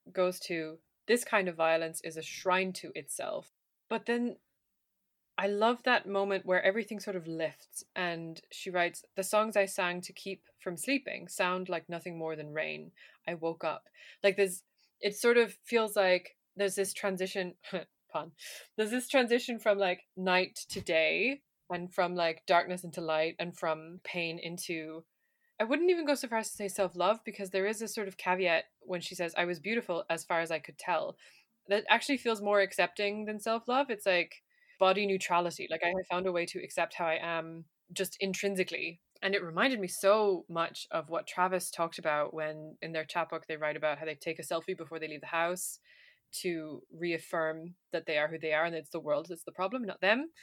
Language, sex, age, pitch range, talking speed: English, female, 20-39, 165-205 Hz, 200 wpm